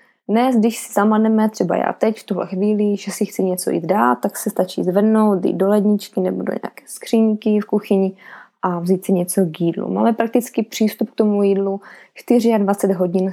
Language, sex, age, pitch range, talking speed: Czech, female, 20-39, 185-220 Hz, 190 wpm